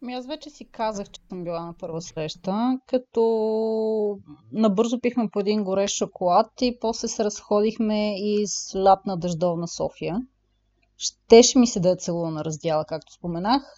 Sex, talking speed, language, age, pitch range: female, 150 wpm, Bulgarian, 30-49, 175-235 Hz